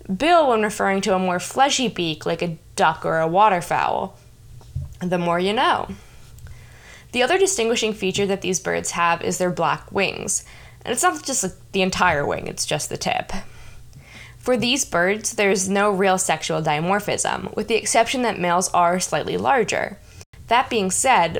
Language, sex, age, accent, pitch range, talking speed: English, female, 10-29, American, 170-215 Hz, 170 wpm